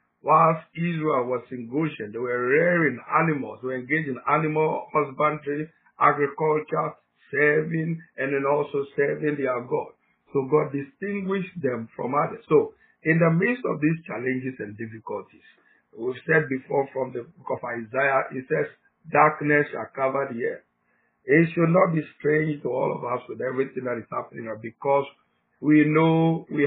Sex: male